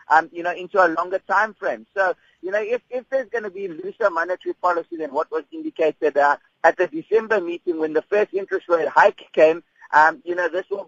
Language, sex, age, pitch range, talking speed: English, male, 50-69, 160-210 Hz, 220 wpm